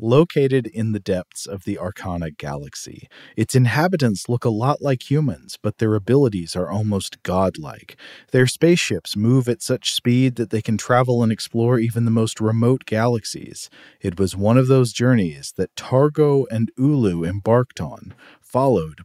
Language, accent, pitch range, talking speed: English, American, 95-125 Hz, 160 wpm